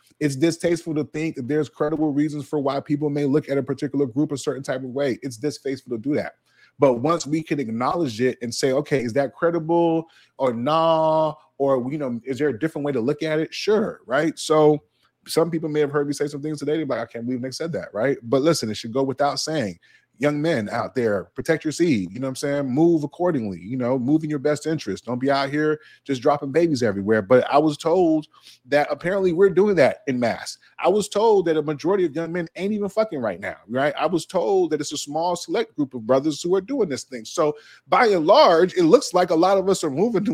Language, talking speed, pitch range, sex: English, 245 wpm, 130-165 Hz, male